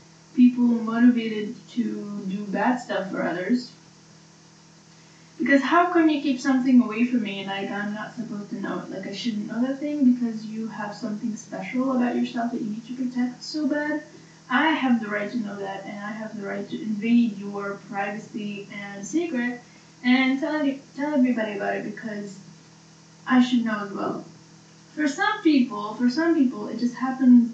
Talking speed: 185 wpm